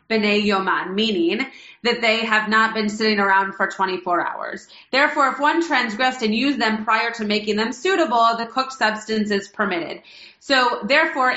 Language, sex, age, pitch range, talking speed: English, female, 30-49, 215-275 Hz, 170 wpm